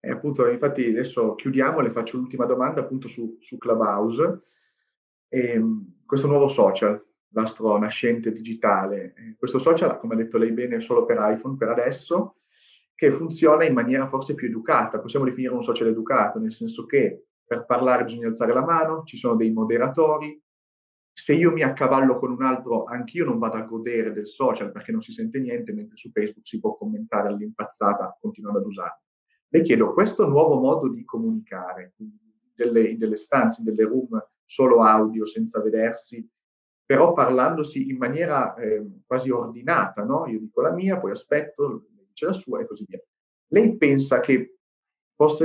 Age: 30-49